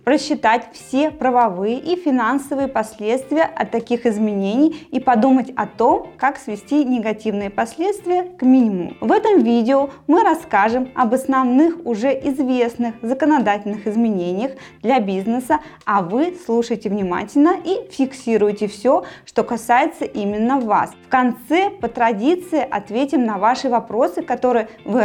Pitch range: 205-270 Hz